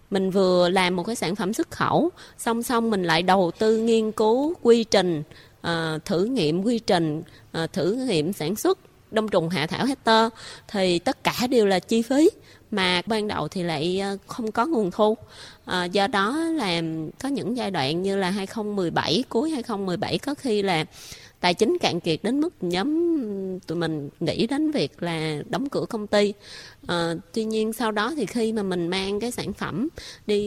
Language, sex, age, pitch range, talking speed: Vietnamese, female, 20-39, 175-235 Hz, 190 wpm